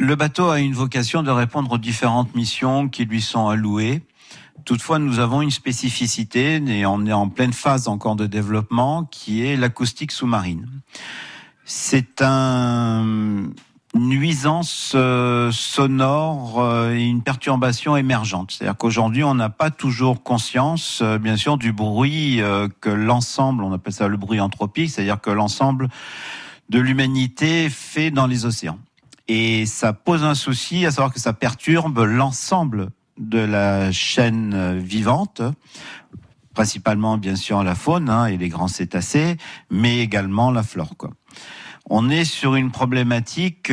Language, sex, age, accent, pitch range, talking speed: French, male, 50-69, French, 105-135 Hz, 140 wpm